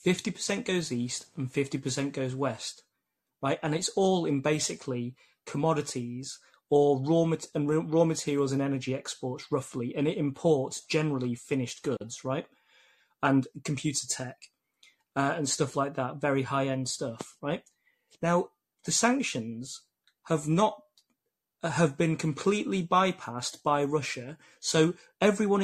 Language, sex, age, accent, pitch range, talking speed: English, male, 30-49, British, 135-185 Hz, 130 wpm